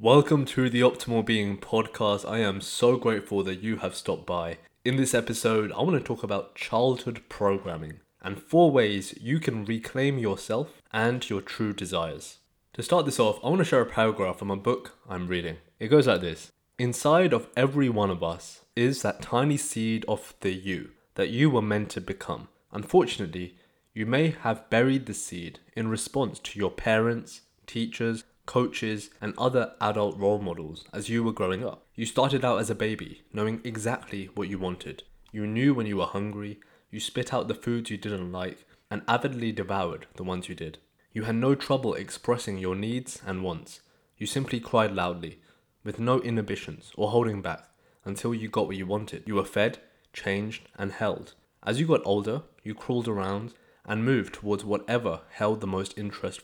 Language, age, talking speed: English, 20-39, 185 wpm